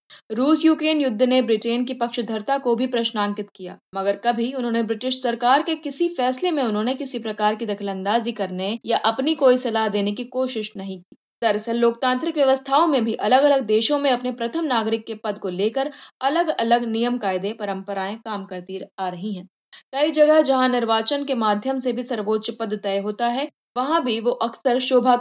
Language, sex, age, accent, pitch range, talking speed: Hindi, female, 20-39, native, 210-260 Hz, 190 wpm